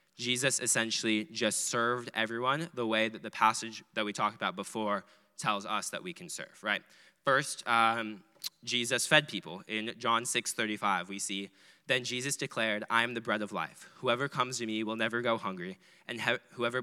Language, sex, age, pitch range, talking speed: English, male, 10-29, 105-125 Hz, 185 wpm